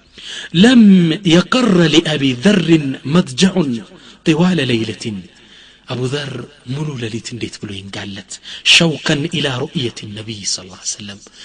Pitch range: 115-150 Hz